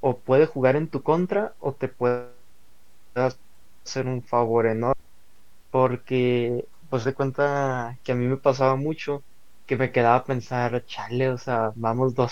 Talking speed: 155 wpm